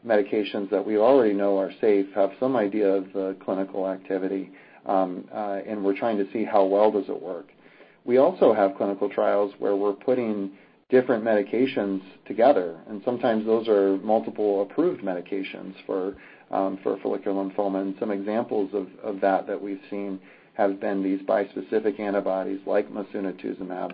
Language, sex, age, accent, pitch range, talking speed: English, male, 40-59, American, 95-105 Hz, 165 wpm